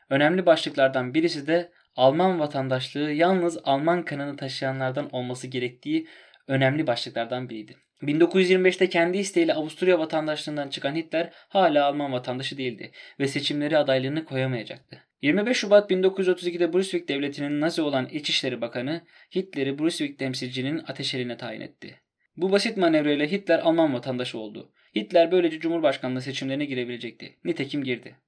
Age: 20-39